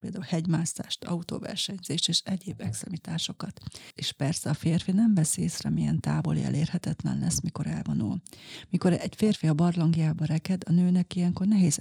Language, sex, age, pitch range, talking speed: Hungarian, female, 30-49, 165-185 Hz, 145 wpm